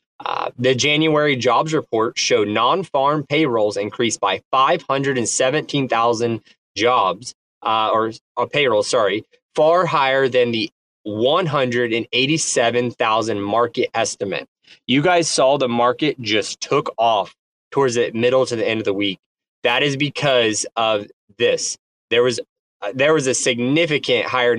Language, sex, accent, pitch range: English, male, American, 120-165 Hz